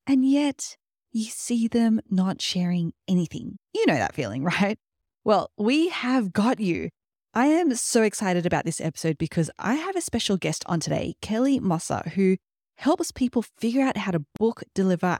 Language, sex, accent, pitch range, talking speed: English, female, Australian, 165-245 Hz, 175 wpm